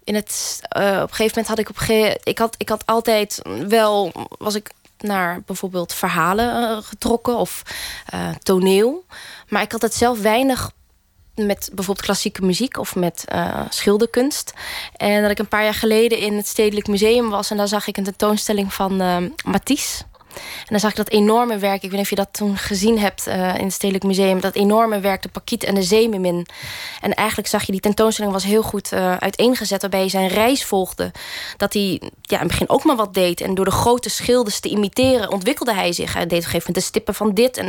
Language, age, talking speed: Dutch, 20-39, 220 wpm